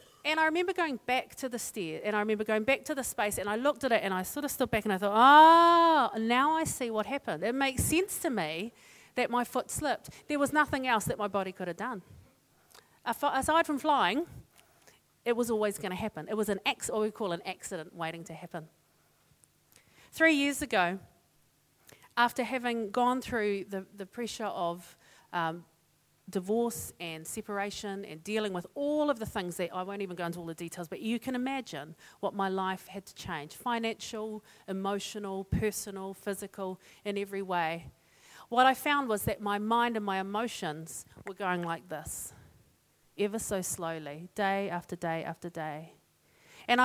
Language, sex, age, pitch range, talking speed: English, female, 40-59, 185-245 Hz, 190 wpm